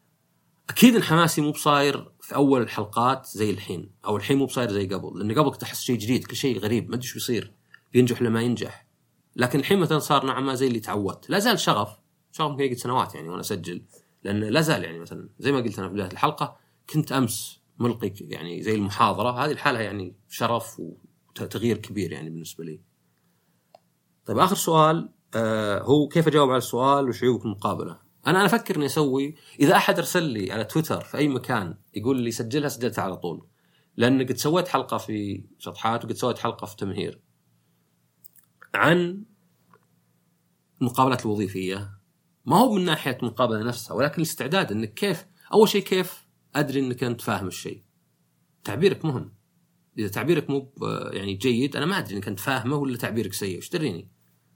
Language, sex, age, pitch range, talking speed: Arabic, male, 30-49, 105-150 Hz, 165 wpm